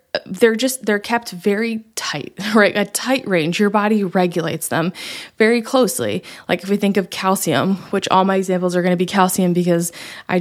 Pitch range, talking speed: 180-215 Hz, 190 wpm